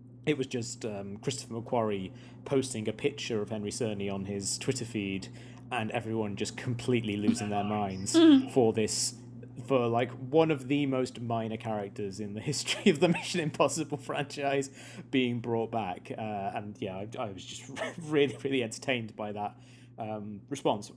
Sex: male